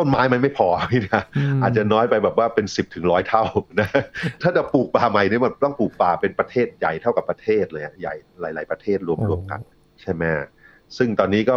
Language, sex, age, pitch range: Thai, male, 30-49, 85-115 Hz